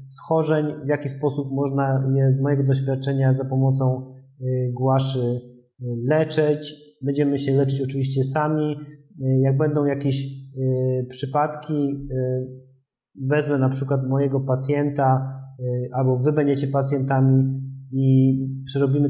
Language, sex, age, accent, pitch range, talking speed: Polish, male, 30-49, native, 130-150 Hz, 105 wpm